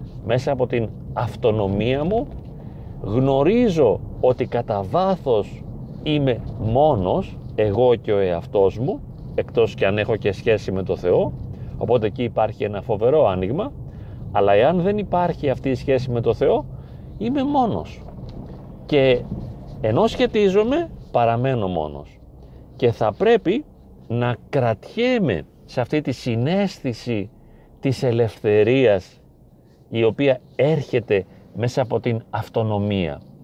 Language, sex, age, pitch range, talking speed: Greek, male, 40-59, 110-155 Hz, 120 wpm